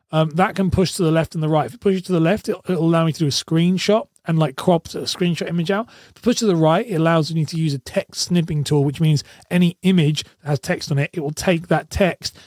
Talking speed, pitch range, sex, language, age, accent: 295 wpm, 150-180 Hz, male, English, 30-49, British